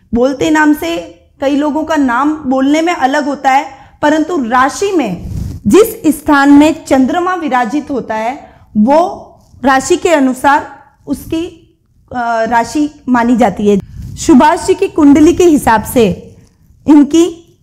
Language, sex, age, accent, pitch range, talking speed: Hindi, female, 20-39, native, 255-320 Hz, 135 wpm